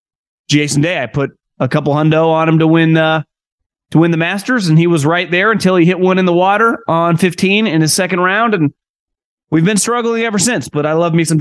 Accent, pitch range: American, 135-180 Hz